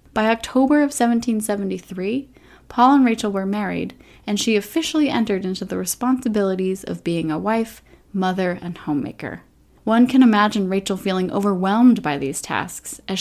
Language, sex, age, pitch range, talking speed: English, female, 20-39, 185-240 Hz, 150 wpm